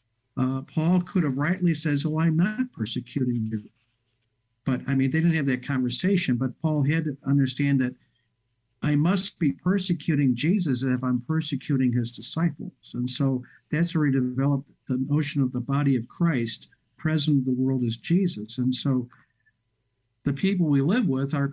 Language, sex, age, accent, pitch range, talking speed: English, male, 50-69, American, 130-165 Hz, 175 wpm